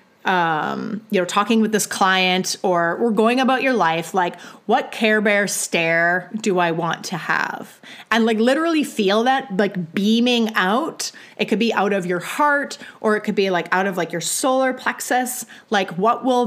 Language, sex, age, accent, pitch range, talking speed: English, female, 30-49, American, 180-235 Hz, 190 wpm